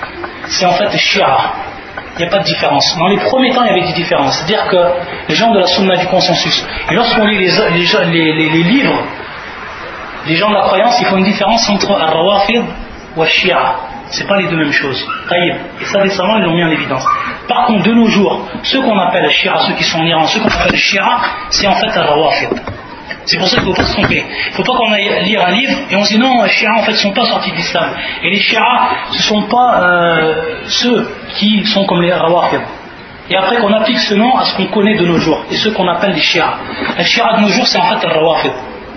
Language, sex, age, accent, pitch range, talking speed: French, male, 30-49, French, 175-220 Hz, 255 wpm